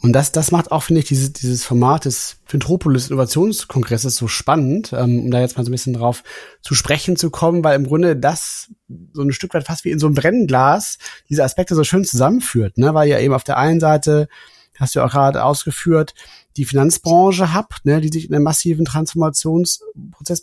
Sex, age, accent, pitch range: male, 30-49, German, 135-165 Hz